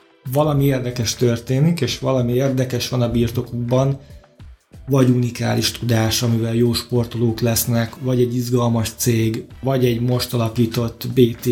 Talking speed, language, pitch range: 130 wpm, Hungarian, 120-140 Hz